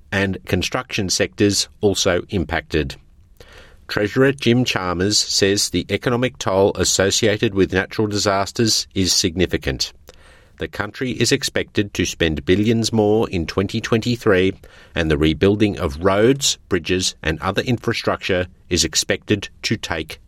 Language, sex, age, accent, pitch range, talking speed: English, male, 50-69, Australian, 85-110 Hz, 120 wpm